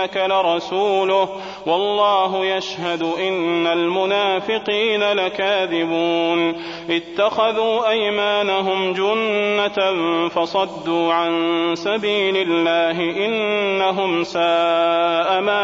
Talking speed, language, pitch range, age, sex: 60 wpm, Arabic, 170-210 Hz, 30-49, male